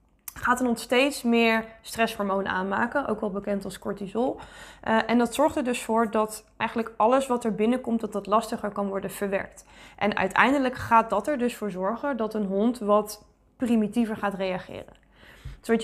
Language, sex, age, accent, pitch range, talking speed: Dutch, female, 20-39, Dutch, 205-240 Hz, 180 wpm